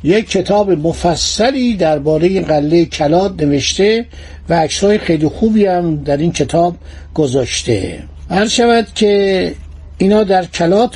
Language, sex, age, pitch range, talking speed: Persian, male, 60-79, 165-220 Hz, 115 wpm